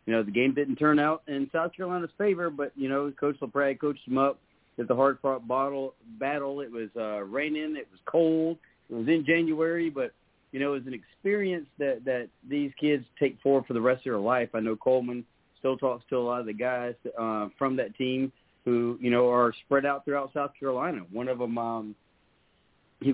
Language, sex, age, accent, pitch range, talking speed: English, male, 40-59, American, 115-135 Hz, 215 wpm